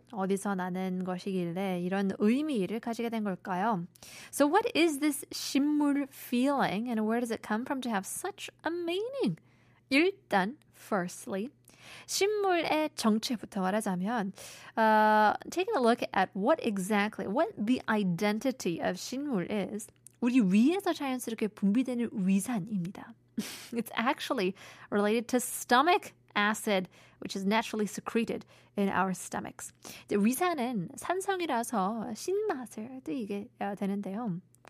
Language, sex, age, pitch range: Korean, female, 20-39, 195-275 Hz